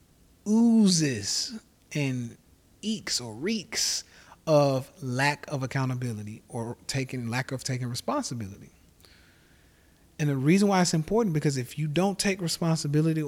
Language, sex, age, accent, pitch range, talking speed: English, male, 30-49, American, 110-160 Hz, 120 wpm